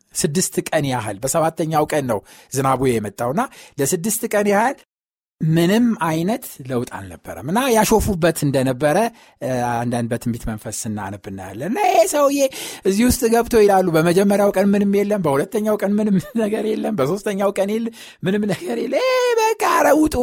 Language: Amharic